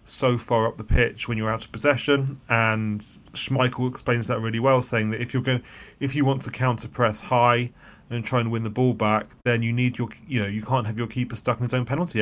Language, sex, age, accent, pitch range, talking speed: English, male, 30-49, British, 110-130 Hz, 255 wpm